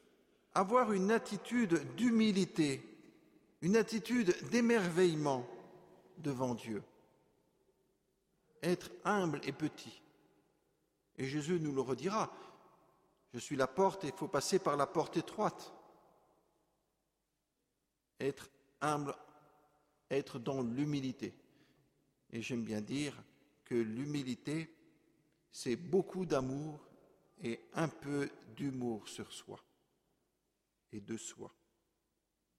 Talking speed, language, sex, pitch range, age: 100 wpm, French, male, 140-210 Hz, 50-69